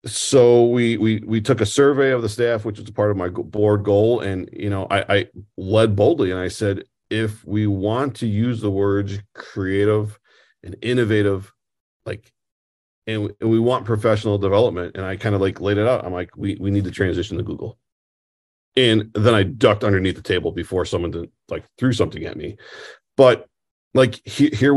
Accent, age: American, 40-59